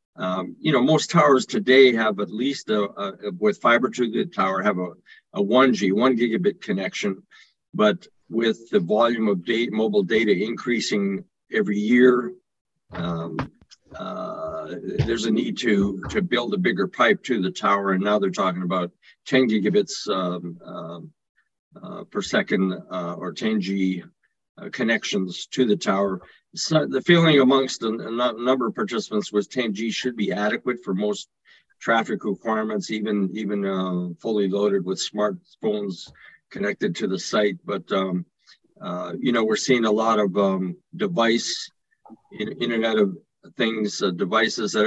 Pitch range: 95-130 Hz